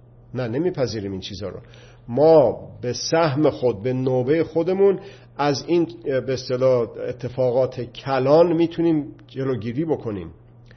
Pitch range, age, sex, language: 120-150 Hz, 50-69, male, Persian